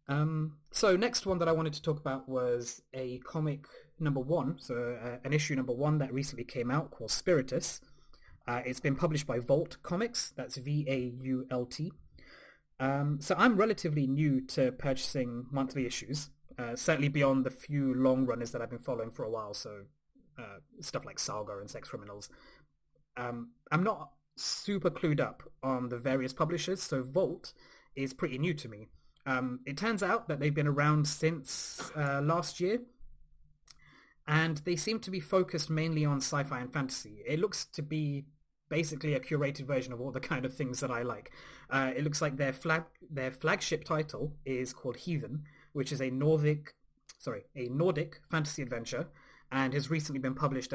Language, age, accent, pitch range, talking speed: English, 20-39, British, 130-160 Hz, 175 wpm